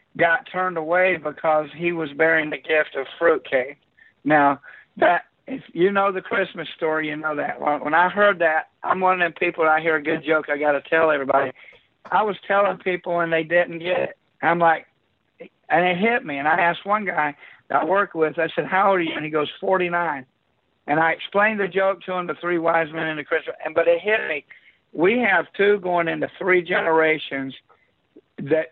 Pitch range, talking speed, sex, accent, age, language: 150-180 Hz, 215 wpm, male, American, 60-79, English